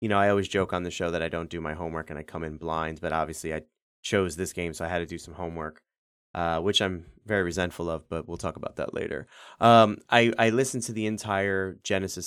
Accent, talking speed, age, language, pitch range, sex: American, 255 wpm, 30-49, English, 85-105 Hz, male